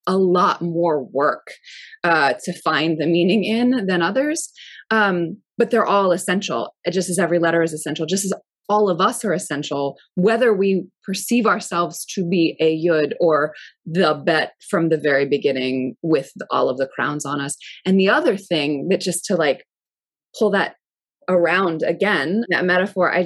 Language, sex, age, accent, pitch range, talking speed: English, female, 20-39, American, 155-190 Hz, 180 wpm